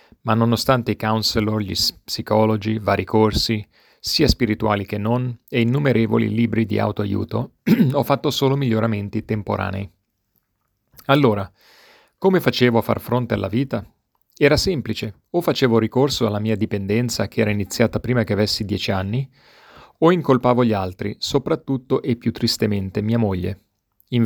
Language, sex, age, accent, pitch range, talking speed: English, male, 40-59, Italian, 105-120 Hz, 140 wpm